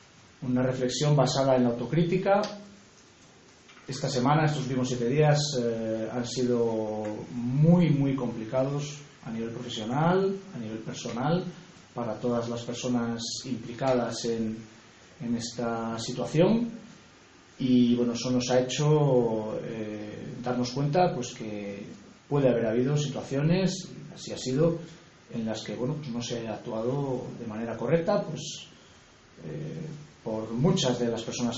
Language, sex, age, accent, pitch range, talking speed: English, male, 30-49, Spanish, 115-150 Hz, 135 wpm